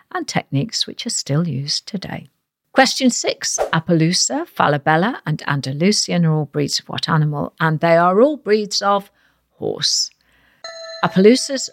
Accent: British